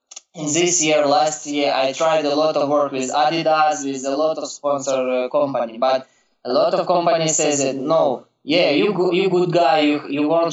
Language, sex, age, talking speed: German, male, 20-39, 205 wpm